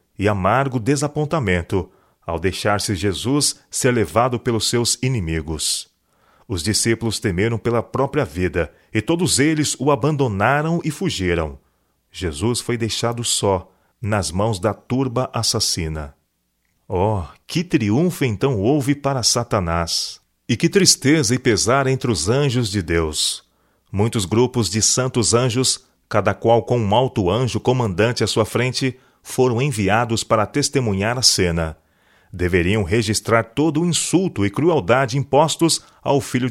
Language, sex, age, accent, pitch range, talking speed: Portuguese, male, 40-59, Brazilian, 95-135 Hz, 135 wpm